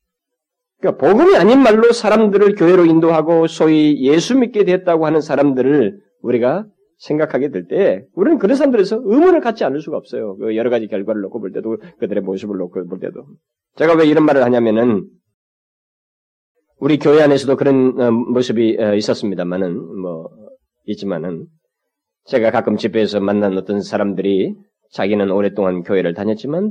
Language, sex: Korean, male